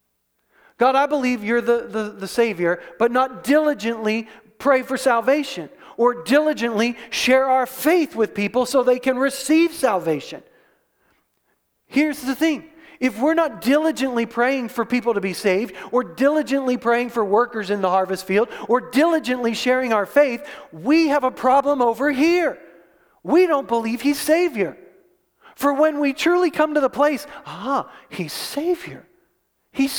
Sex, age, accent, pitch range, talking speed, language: male, 40-59, American, 230-305 Hz, 150 wpm, English